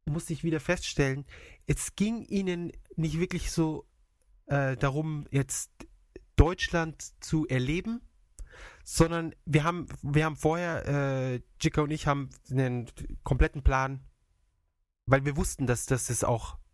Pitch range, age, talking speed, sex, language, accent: 115-160 Hz, 30-49, 135 wpm, male, German, German